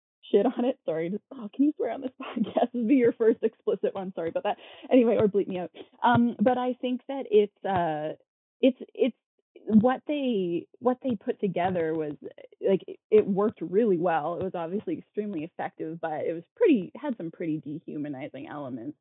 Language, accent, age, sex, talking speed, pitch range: English, American, 20-39, female, 195 wpm, 170-250 Hz